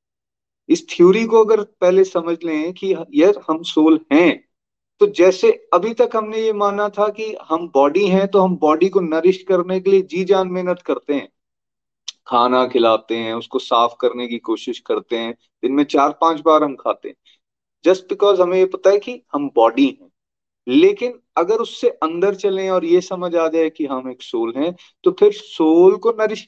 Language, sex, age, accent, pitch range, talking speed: Hindi, male, 30-49, native, 145-220 Hz, 195 wpm